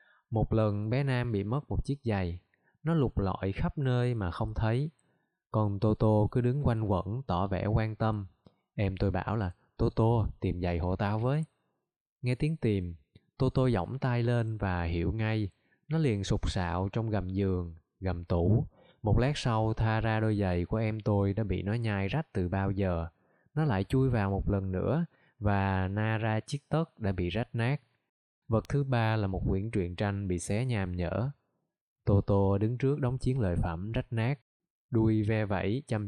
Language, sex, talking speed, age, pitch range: Vietnamese, male, 195 wpm, 20-39, 100-125 Hz